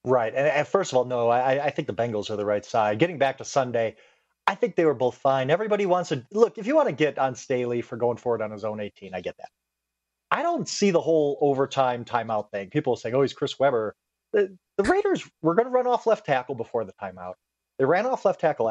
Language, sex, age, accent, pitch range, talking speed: English, male, 30-49, American, 120-200 Hz, 255 wpm